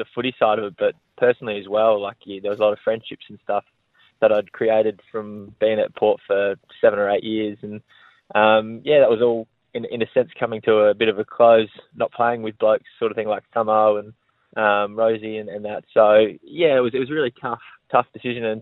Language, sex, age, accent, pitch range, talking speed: English, male, 20-39, Australian, 105-120 Hz, 240 wpm